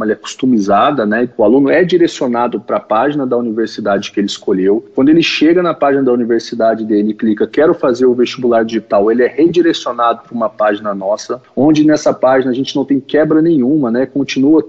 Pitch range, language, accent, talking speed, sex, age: 120-180 Hz, Portuguese, Brazilian, 200 wpm, male, 40-59